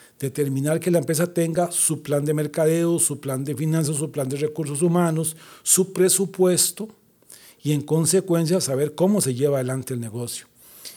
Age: 40-59